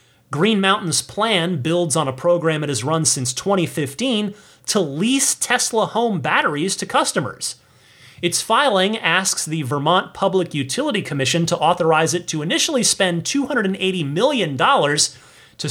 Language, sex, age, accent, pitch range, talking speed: English, male, 30-49, American, 135-195 Hz, 140 wpm